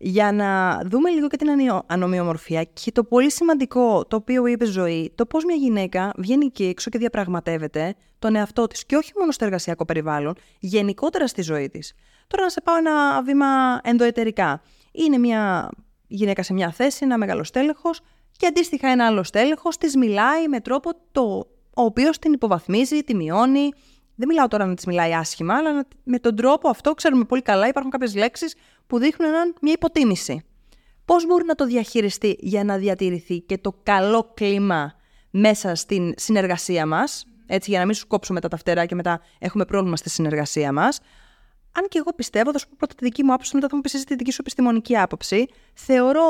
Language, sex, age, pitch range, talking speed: Greek, female, 20-39, 190-280 Hz, 185 wpm